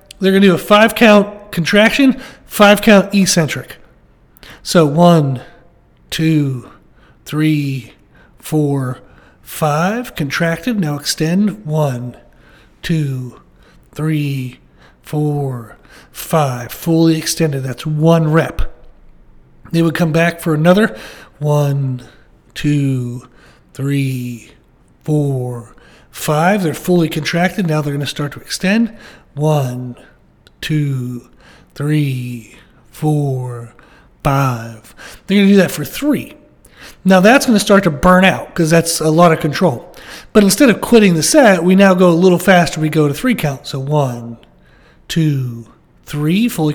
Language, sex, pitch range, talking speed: English, male, 140-185 Hz, 120 wpm